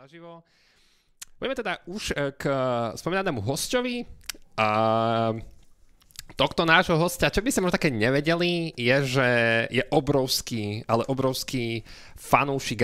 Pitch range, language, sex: 105-135 Hz, Slovak, male